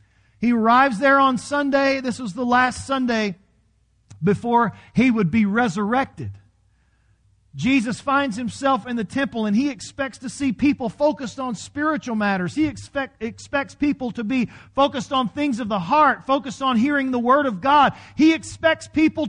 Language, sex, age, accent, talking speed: English, male, 40-59, American, 160 wpm